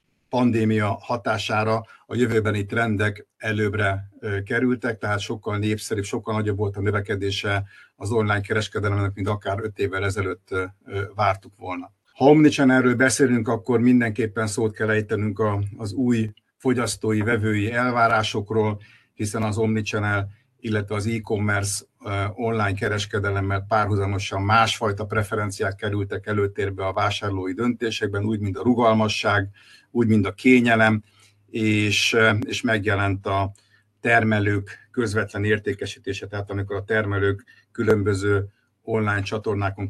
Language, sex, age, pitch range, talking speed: Hungarian, male, 50-69, 100-115 Hz, 115 wpm